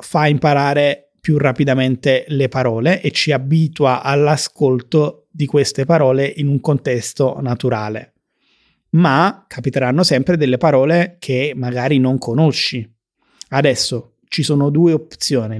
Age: 30-49